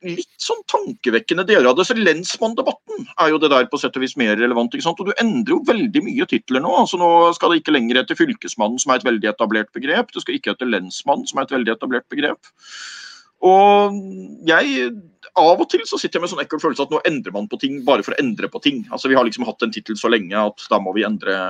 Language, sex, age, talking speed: English, male, 30-49, 260 wpm